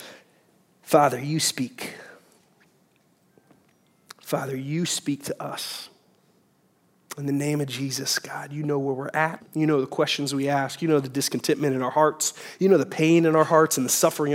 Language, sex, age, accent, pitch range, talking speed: English, male, 30-49, American, 130-155 Hz, 175 wpm